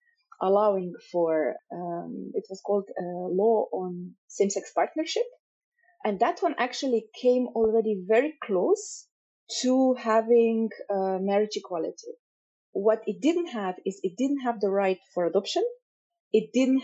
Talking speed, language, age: 135 wpm, English, 30-49